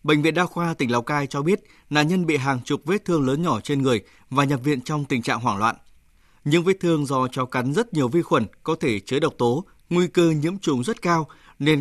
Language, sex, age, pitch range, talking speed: English, male, 20-39, 130-165 Hz, 255 wpm